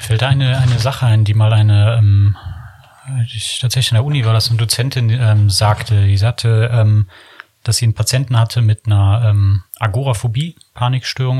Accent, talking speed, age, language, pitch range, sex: German, 180 wpm, 30-49, German, 105-120 Hz, male